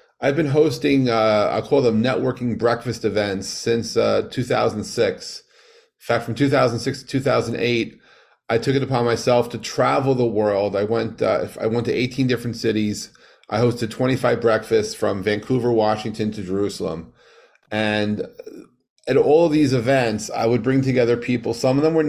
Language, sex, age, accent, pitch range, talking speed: English, male, 40-59, American, 110-135 Hz, 165 wpm